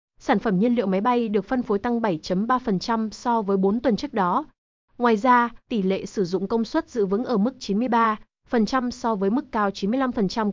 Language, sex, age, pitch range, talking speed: Vietnamese, female, 20-39, 200-255 Hz, 200 wpm